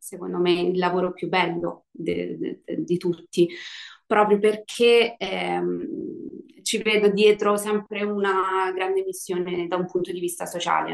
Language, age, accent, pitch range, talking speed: Italian, 20-39, native, 185-205 Hz, 130 wpm